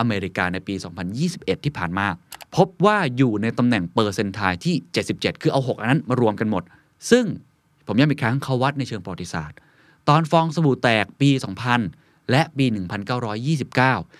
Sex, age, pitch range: male, 20-39, 105-145 Hz